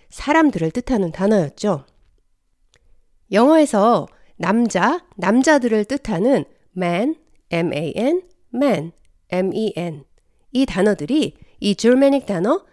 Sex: female